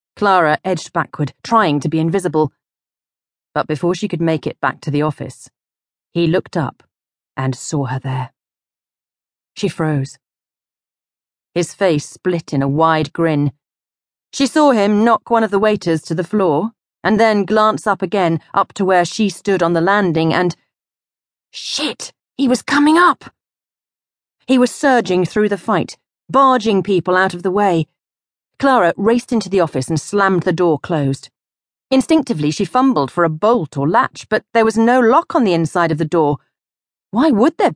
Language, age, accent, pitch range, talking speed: English, 40-59, British, 155-215 Hz, 170 wpm